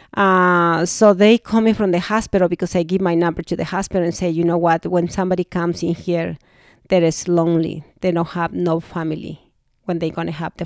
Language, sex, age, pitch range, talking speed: English, female, 40-59, 180-215 Hz, 225 wpm